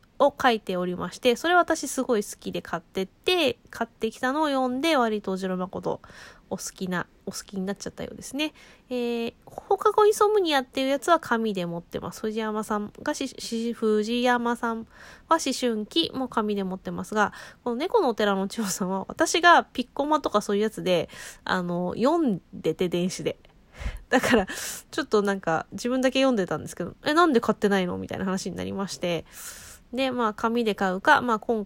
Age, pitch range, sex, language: 20-39, 190-270 Hz, female, Japanese